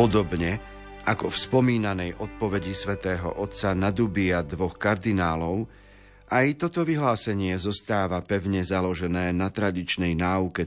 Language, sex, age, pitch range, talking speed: Slovak, male, 40-59, 95-120 Hz, 110 wpm